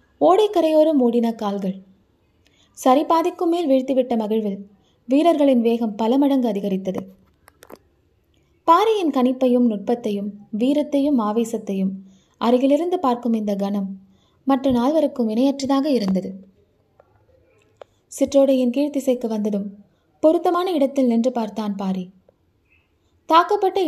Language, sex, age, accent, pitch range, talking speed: Tamil, female, 20-39, native, 200-275 Hz, 90 wpm